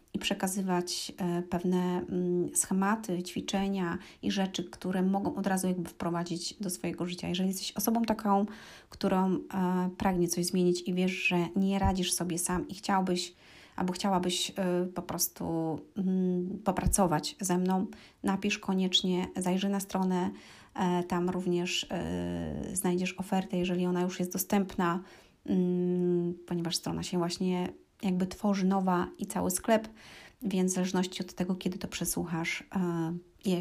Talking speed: 130 wpm